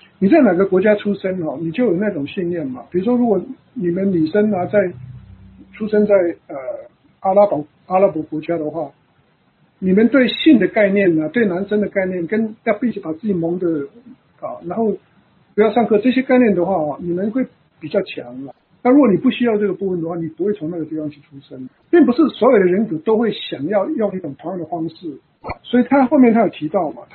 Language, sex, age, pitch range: English, male, 60-79, 165-230 Hz